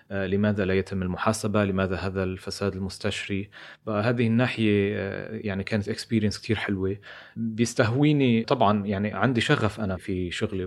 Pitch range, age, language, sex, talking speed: 100-120 Hz, 30-49, Arabic, male, 130 wpm